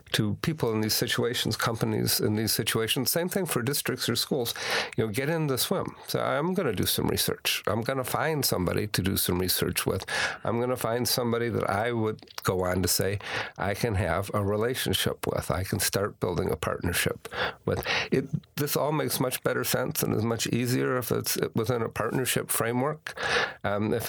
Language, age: English, 50-69